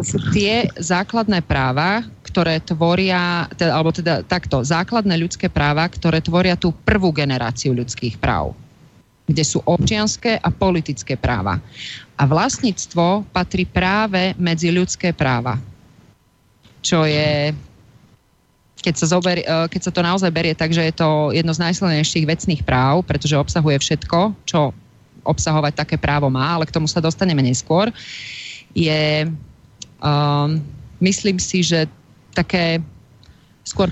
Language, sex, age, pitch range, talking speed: Slovak, female, 30-49, 140-175 Hz, 125 wpm